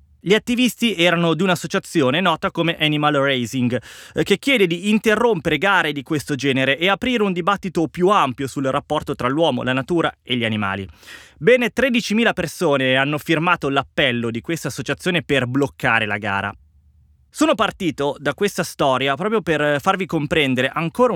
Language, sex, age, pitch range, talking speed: Italian, male, 20-39, 130-195 Hz, 155 wpm